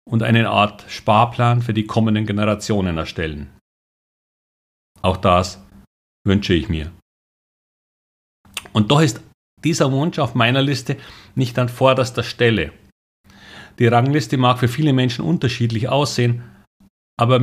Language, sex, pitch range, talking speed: German, male, 95-125 Hz, 120 wpm